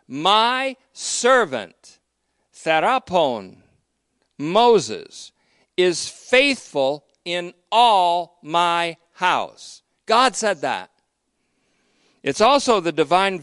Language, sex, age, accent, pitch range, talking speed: English, male, 50-69, American, 145-215 Hz, 75 wpm